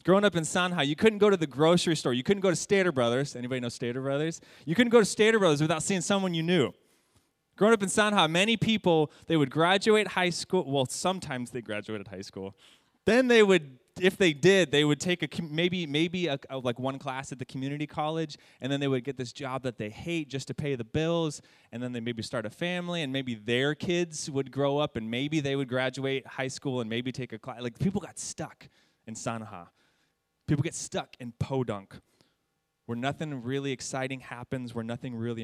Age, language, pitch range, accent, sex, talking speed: 20-39, English, 120-165 Hz, American, male, 220 wpm